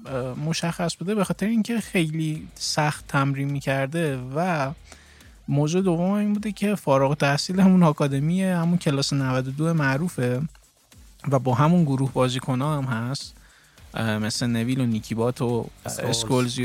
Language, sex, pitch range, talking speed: Persian, male, 120-160 Hz, 135 wpm